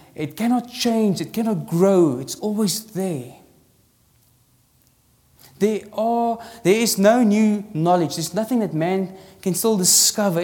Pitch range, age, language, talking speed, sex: 155-210 Hz, 20-39, English, 130 wpm, male